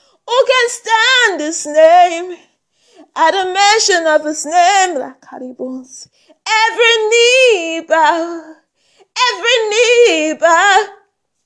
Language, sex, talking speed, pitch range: English, female, 90 wpm, 305-395 Hz